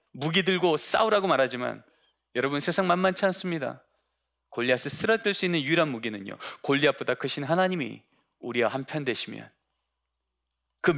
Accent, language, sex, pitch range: native, Korean, male, 120-200 Hz